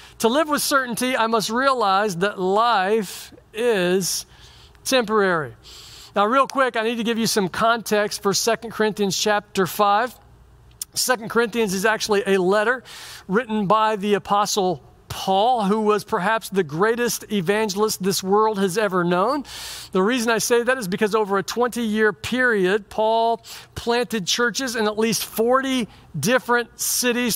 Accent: American